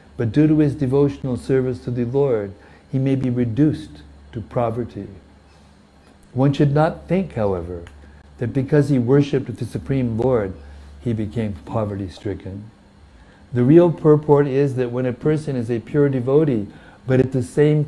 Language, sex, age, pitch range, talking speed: English, male, 60-79, 95-130 Hz, 155 wpm